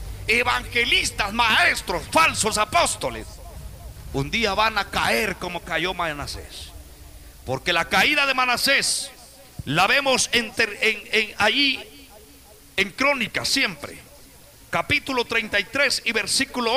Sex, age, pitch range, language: male, 50-69, 170-265 Hz, Spanish